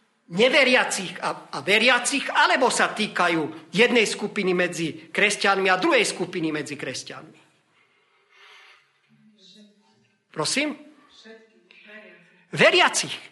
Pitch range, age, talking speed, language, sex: 190-260 Hz, 40-59, 80 wpm, Slovak, male